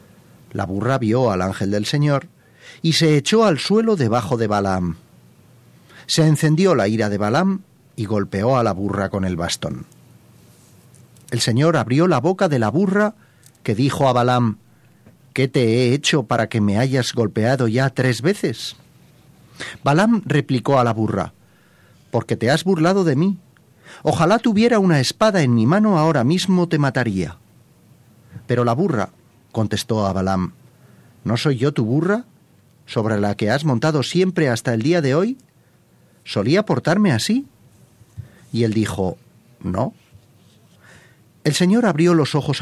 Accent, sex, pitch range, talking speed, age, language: Spanish, male, 110-155 Hz, 155 wpm, 40-59, Spanish